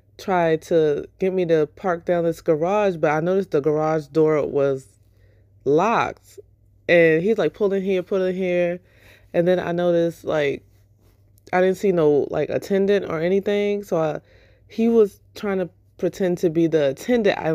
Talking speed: 170 wpm